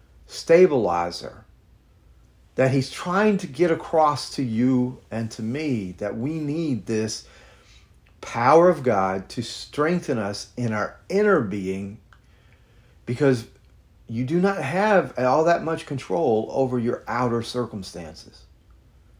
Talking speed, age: 120 wpm, 40-59